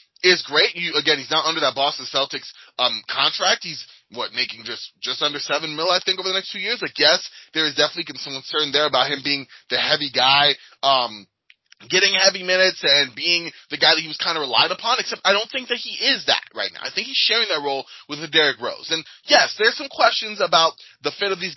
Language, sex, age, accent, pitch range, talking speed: English, male, 20-39, American, 150-195 Hz, 240 wpm